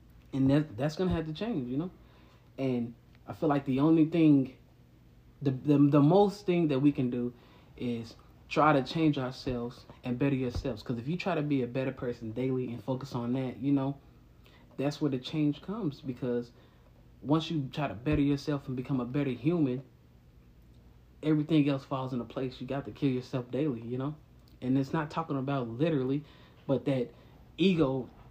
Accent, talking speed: American, 190 wpm